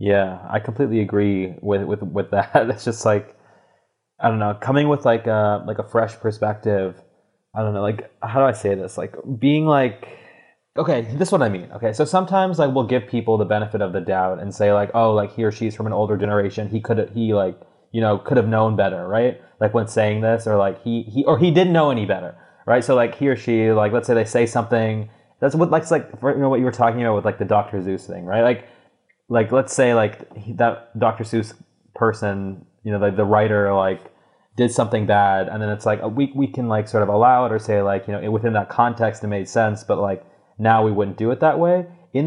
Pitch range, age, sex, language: 105-120 Hz, 20-39, male, English